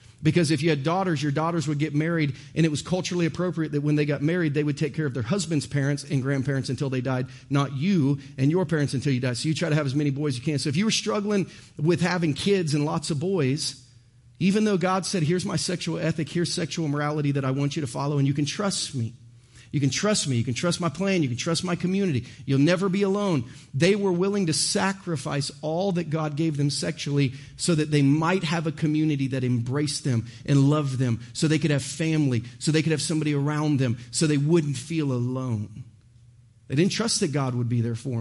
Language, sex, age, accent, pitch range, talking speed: English, male, 40-59, American, 130-165 Hz, 240 wpm